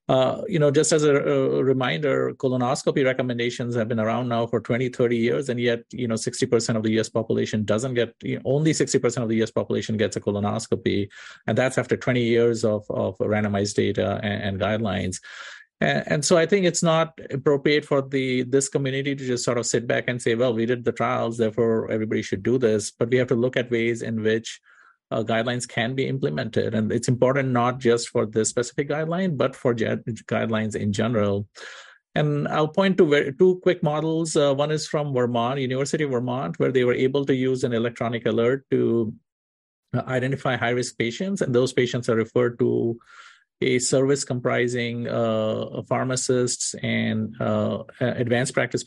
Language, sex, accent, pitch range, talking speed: English, male, Indian, 110-130 Hz, 190 wpm